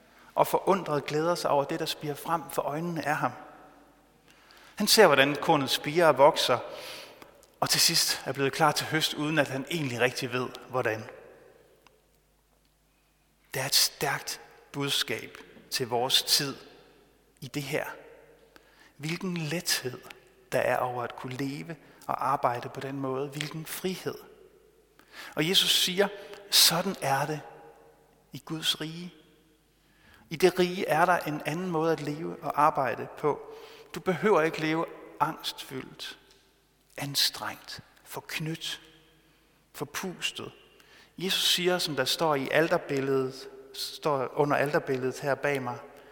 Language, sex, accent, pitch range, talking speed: Danish, male, native, 140-175 Hz, 135 wpm